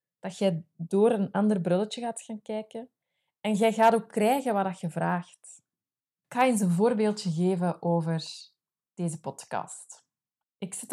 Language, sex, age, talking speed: Dutch, female, 20-39, 155 wpm